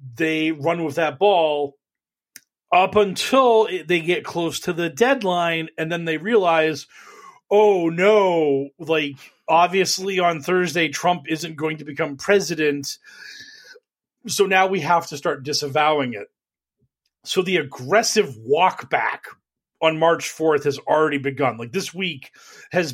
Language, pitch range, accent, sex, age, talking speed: English, 155-195 Hz, American, male, 40-59, 135 wpm